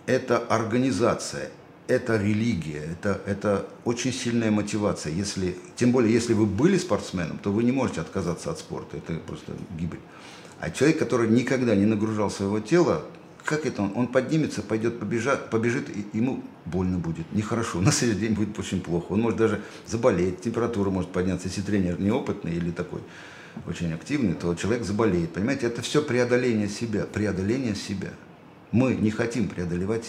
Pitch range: 95-115 Hz